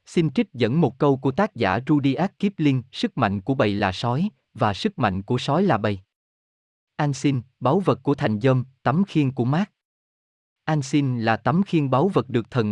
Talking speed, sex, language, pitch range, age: 195 wpm, male, Vietnamese, 115-155 Hz, 20-39